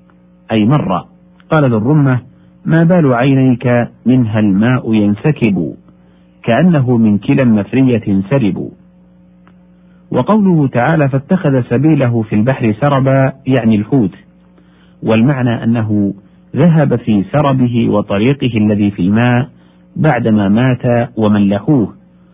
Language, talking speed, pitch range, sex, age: Arabic, 100 wpm, 100-140 Hz, male, 50-69